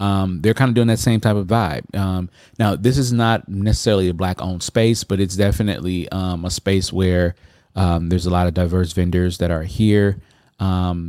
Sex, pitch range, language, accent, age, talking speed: male, 90-110 Hz, English, American, 20-39, 205 wpm